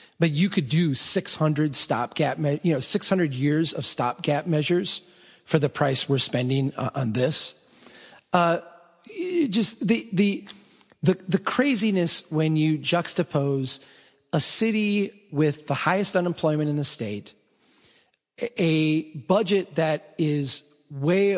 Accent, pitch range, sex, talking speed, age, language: American, 140-180 Hz, male, 130 wpm, 40-59, English